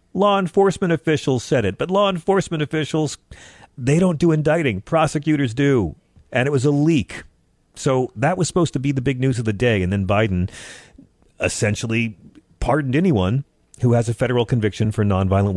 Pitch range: 95-130 Hz